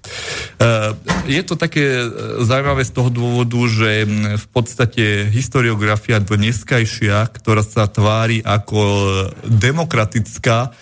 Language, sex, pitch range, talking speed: Slovak, male, 105-120 Hz, 95 wpm